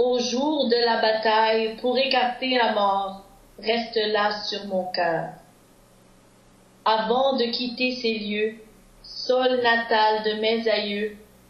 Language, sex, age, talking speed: English, female, 40-59, 125 wpm